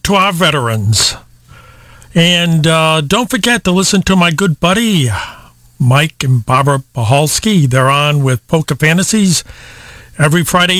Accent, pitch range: American, 135-175 Hz